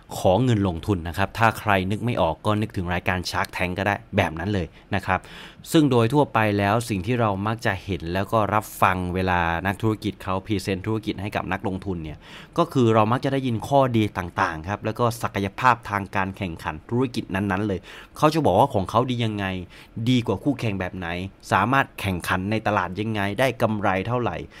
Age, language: 30-49, English